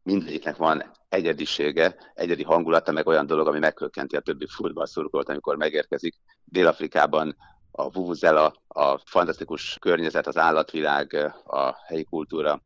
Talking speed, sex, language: 125 wpm, male, Hungarian